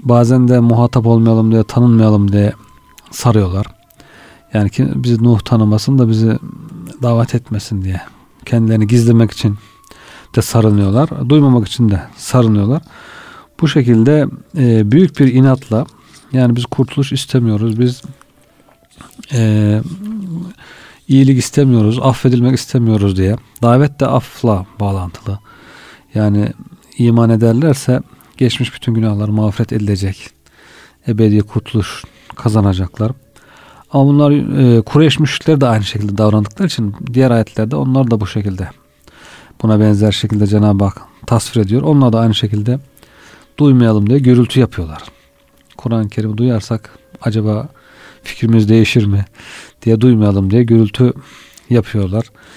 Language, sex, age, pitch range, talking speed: Turkish, male, 40-59, 105-130 Hz, 110 wpm